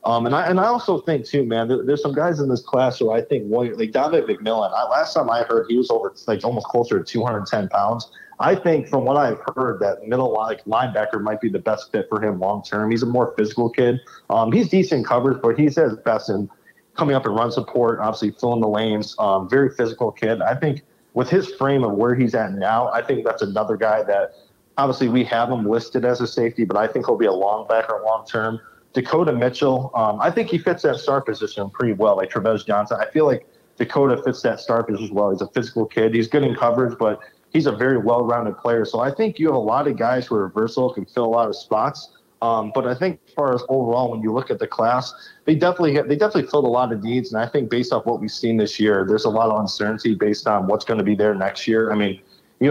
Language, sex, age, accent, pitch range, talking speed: English, male, 30-49, American, 110-135 Hz, 255 wpm